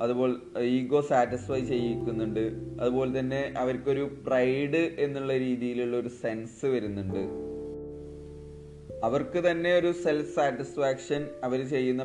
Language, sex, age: Malayalam, male, 20-39